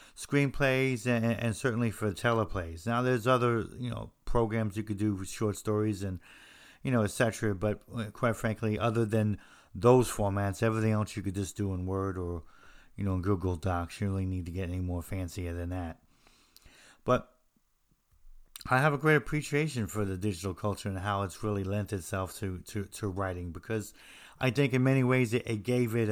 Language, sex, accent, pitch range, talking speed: English, male, American, 95-115 Hz, 190 wpm